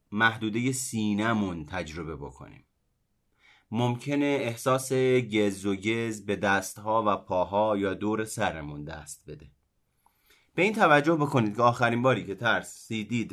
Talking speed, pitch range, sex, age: 120 wpm, 95-130 Hz, male, 30-49